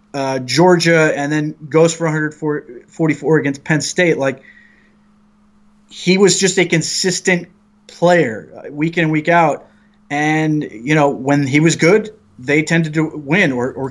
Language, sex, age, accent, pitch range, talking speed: English, male, 30-49, American, 145-180 Hz, 150 wpm